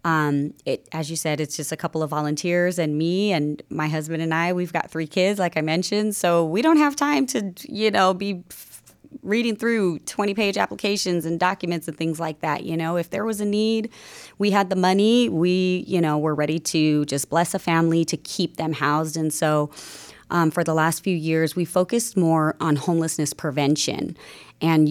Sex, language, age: female, English, 30-49